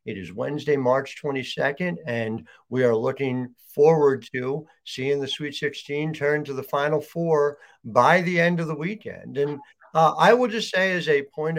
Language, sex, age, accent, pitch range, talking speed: English, male, 60-79, American, 130-155 Hz, 180 wpm